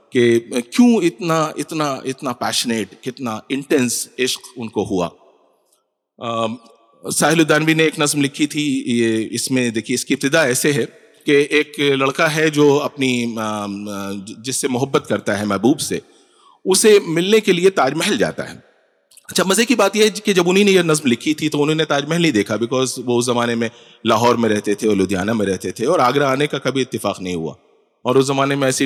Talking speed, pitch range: 200 wpm, 115-160 Hz